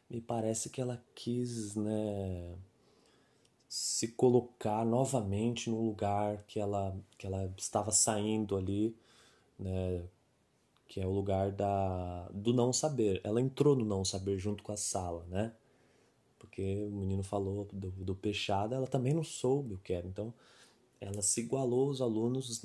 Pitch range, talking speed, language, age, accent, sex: 95-115 Hz, 150 wpm, Portuguese, 20-39, Brazilian, male